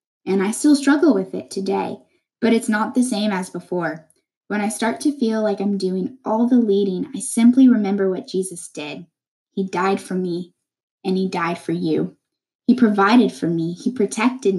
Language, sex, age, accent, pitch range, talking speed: English, female, 10-29, American, 190-260 Hz, 190 wpm